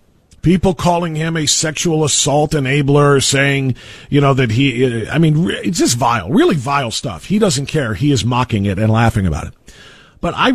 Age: 40-59